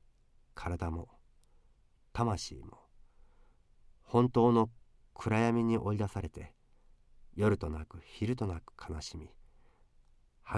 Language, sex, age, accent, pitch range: Japanese, male, 40-59, native, 85-115 Hz